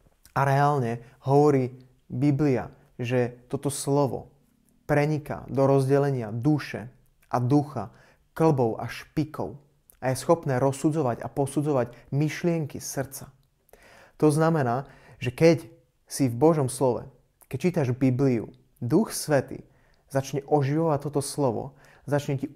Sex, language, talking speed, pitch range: male, Slovak, 115 wpm, 125-145 Hz